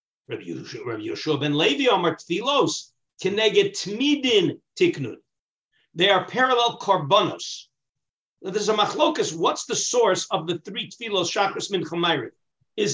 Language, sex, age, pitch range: English, male, 50-69, 155-215 Hz